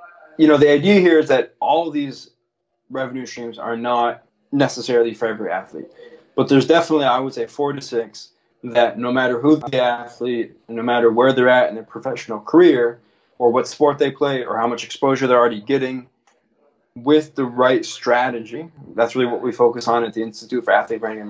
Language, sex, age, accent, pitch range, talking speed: English, male, 20-39, American, 120-145 Hz, 200 wpm